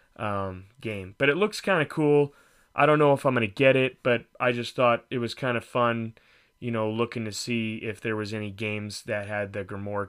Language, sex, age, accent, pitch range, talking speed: English, male, 30-49, American, 110-130 Hz, 240 wpm